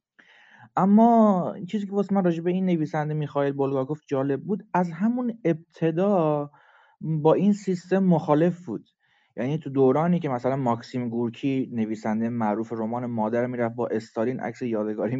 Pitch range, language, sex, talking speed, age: 130-180 Hz, English, male, 145 wpm, 30-49